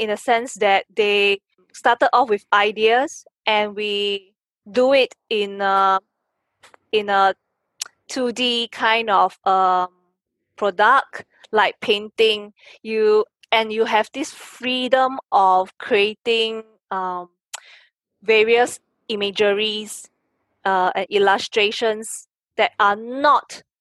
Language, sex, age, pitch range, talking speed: English, female, 20-39, 200-240 Hz, 105 wpm